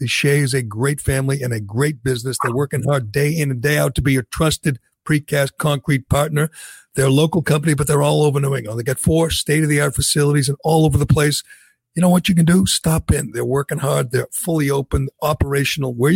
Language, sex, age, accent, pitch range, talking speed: English, male, 60-79, American, 135-155 Hz, 225 wpm